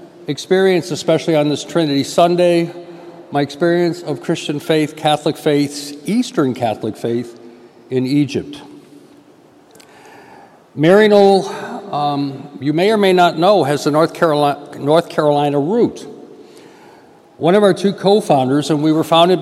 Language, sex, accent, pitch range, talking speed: English, male, American, 145-175 Hz, 135 wpm